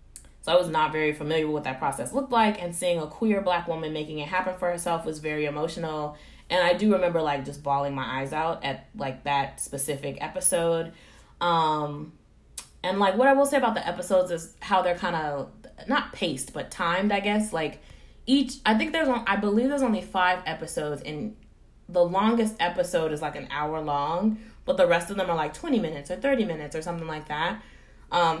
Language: English